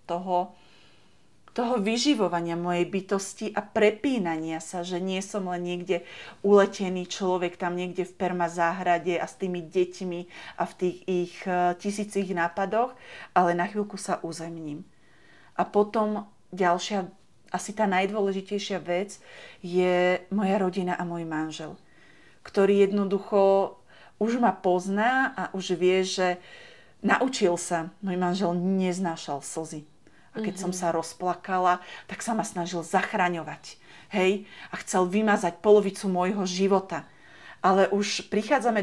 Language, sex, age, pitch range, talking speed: Slovak, female, 40-59, 175-210 Hz, 130 wpm